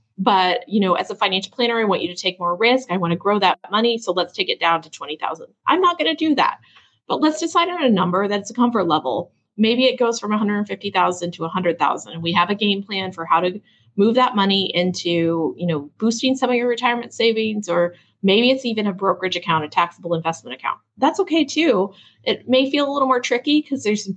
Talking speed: 235 wpm